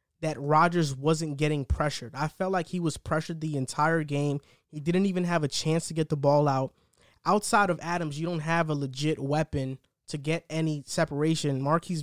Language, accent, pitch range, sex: English, American, 145-170 Hz, male